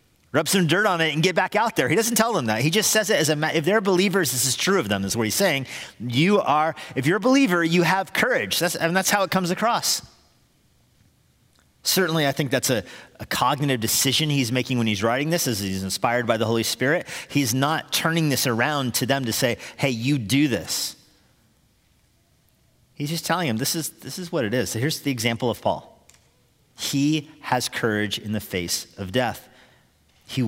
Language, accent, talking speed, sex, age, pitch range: English, American, 215 wpm, male, 40-59, 110-155 Hz